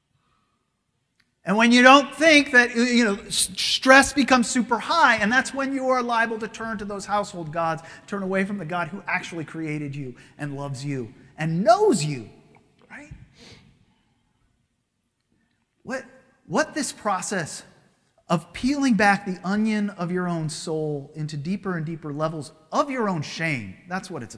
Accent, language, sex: American, English, male